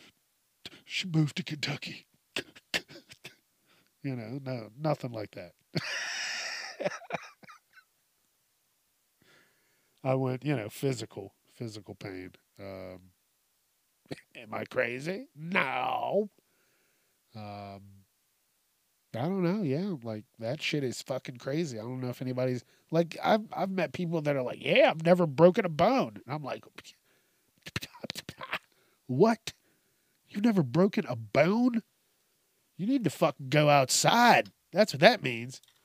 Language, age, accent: English, 40-59, American